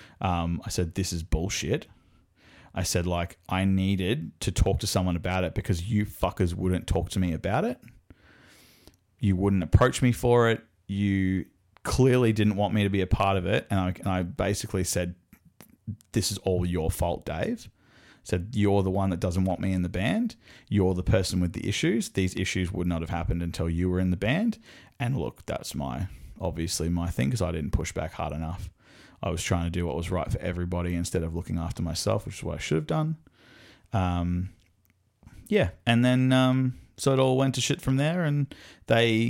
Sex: male